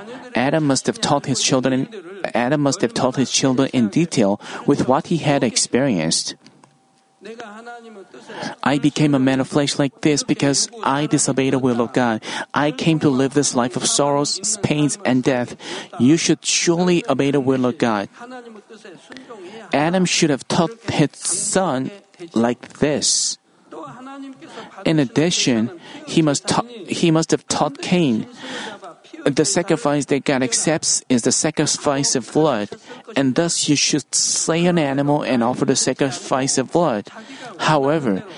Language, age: Korean, 40-59